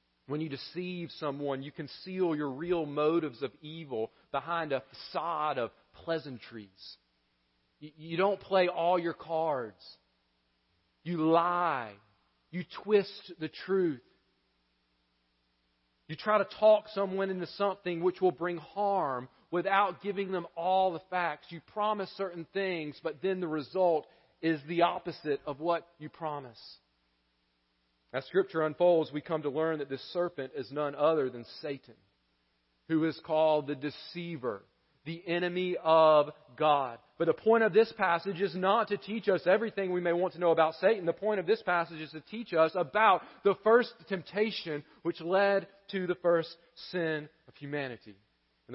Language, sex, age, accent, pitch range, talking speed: English, male, 40-59, American, 140-180 Hz, 155 wpm